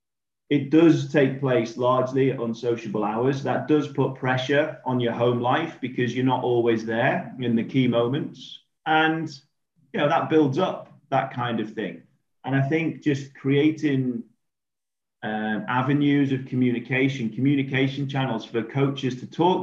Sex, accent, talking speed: male, British, 155 wpm